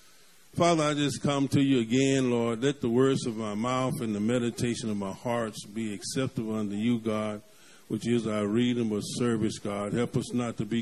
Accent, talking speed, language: American, 205 wpm, English